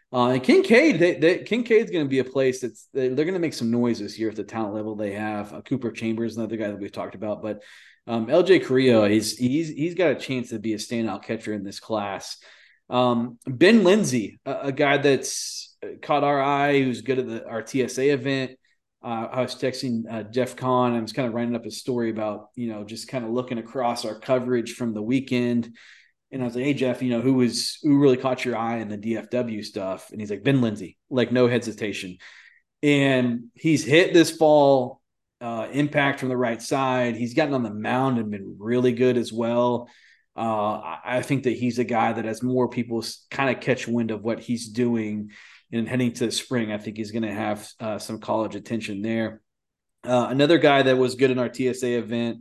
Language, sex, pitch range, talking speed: English, male, 110-130 Hz, 220 wpm